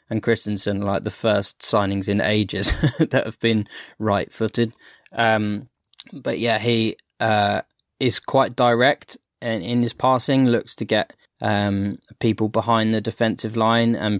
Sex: male